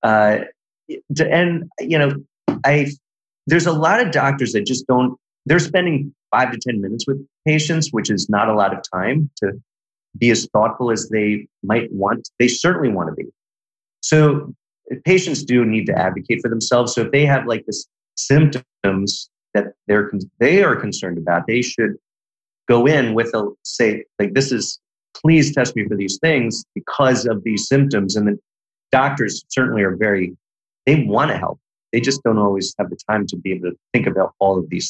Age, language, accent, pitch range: 30-49, English, American, 105-140 Hz